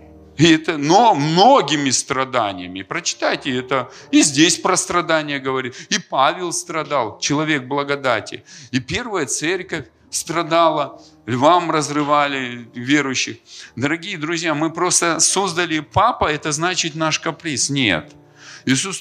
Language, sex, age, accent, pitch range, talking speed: Russian, male, 40-59, native, 125-155 Hz, 115 wpm